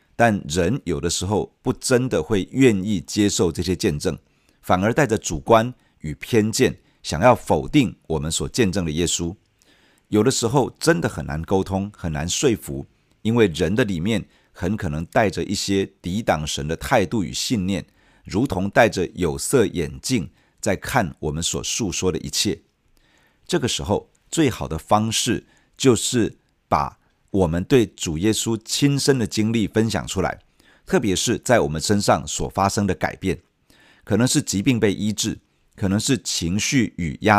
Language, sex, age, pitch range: Chinese, male, 50-69, 85-115 Hz